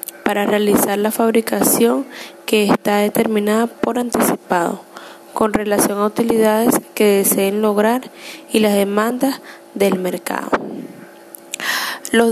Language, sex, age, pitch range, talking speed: Spanish, female, 10-29, 200-230 Hz, 105 wpm